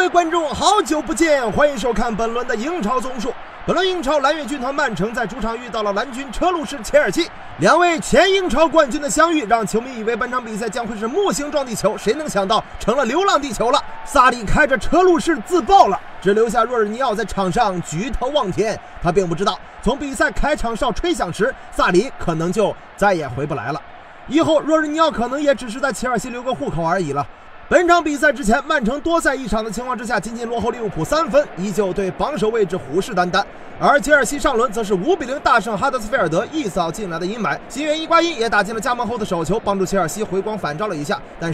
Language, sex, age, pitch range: Chinese, male, 30-49, 205-290 Hz